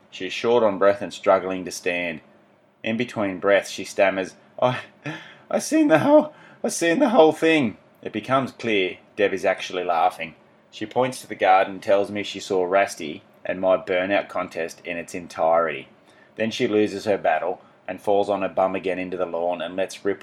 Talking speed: 190 wpm